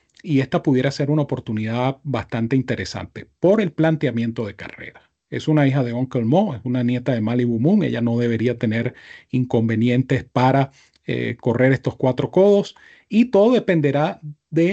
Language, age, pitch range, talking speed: Spanish, 40-59, 120-150 Hz, 165 wpm